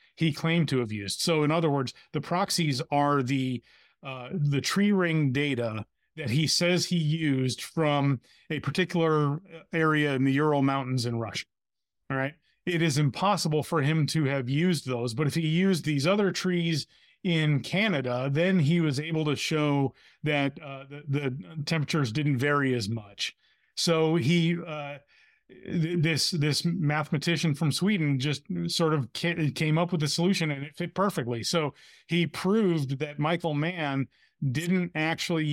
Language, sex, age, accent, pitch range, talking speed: English, male, 30-49, American, 135-170 Hz, 160 wpm